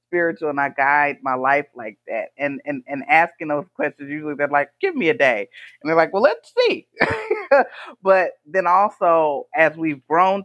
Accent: American